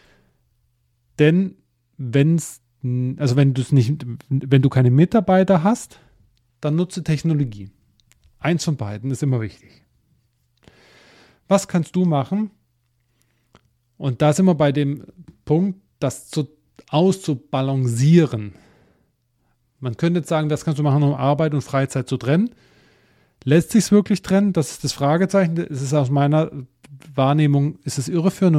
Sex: male